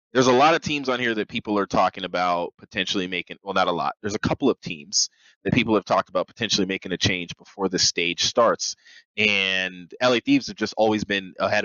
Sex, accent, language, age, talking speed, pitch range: male, American, English, 20-39, 225 wpm, 95-120 Hz